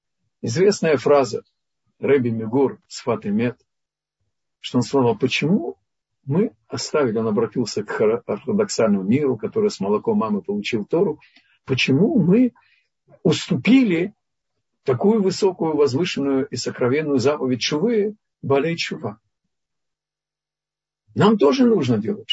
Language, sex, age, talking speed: Russian, male, 50-69, 110 wpm